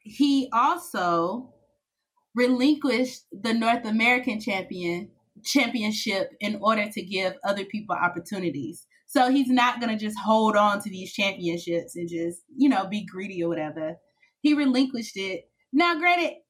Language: English